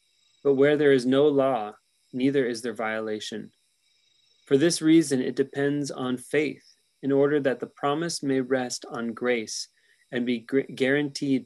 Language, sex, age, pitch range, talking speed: English, male, 30-49, 120-140 Hz, 150 wpm